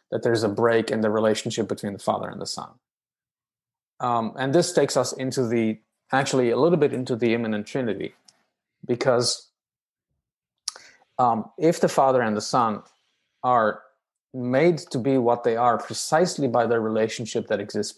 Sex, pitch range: male, 110-135 Hz